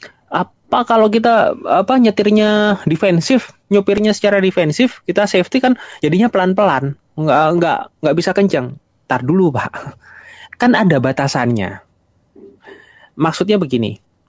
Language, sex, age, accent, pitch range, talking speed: Indonesian, male, 20-39, native, 125-180 Hz, 110 wpm